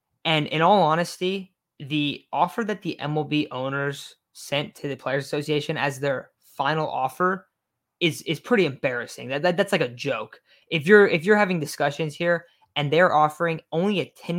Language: English